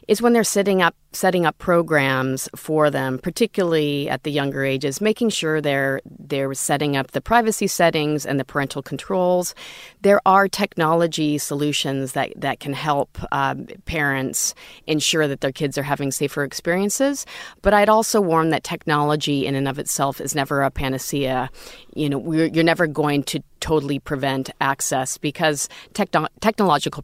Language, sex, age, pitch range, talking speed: English, female, 40-59, 140-180 Hz, 160 wpm